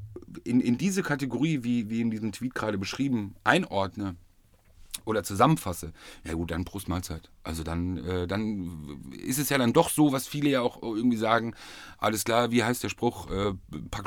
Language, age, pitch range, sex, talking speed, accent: German, 40-59, 90-115 Hz, male, 185 wpm, German